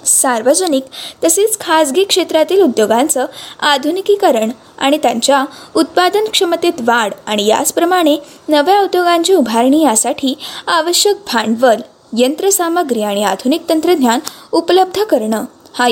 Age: 20-39